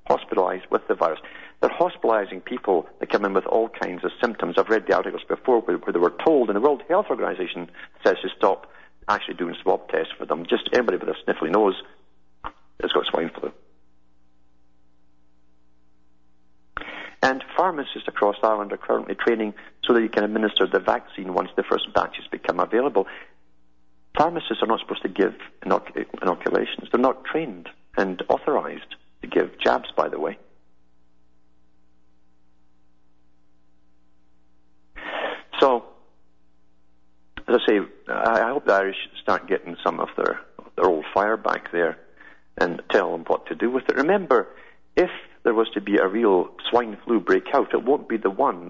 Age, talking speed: 50-69, 160 wpm